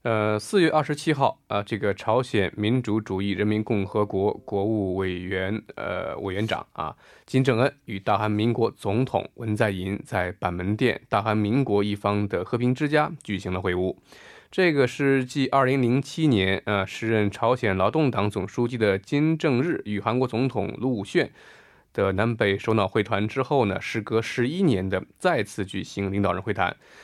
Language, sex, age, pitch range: Korean, male, 20-39, 100-130 Hz